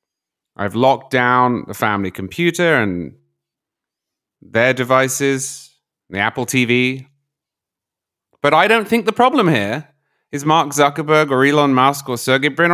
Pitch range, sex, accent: 115-160 Hz, male, British